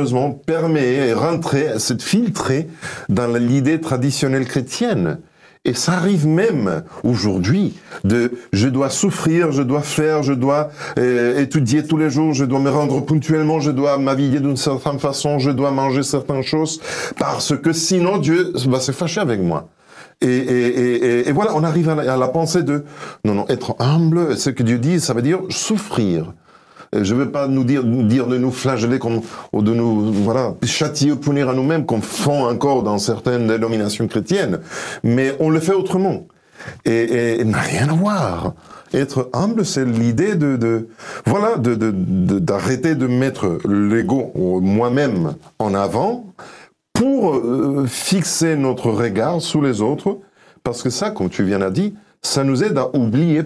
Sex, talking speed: male, 175 wpm